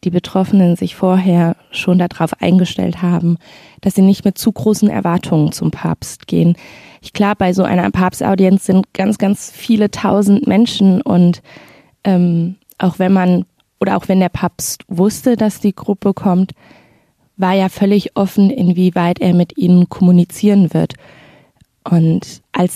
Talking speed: 150 wpm